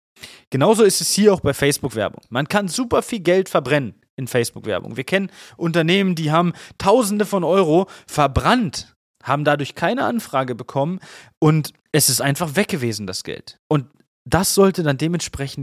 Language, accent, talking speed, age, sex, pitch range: German, German, 155 wpm, 30-49, male, 125-175 Hz